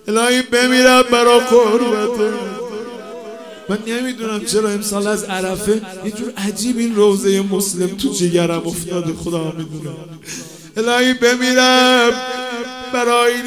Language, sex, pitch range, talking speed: Persian, male, 215-245 Hz, 90 wpm